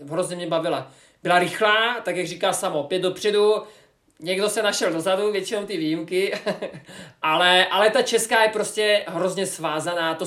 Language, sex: Czech, male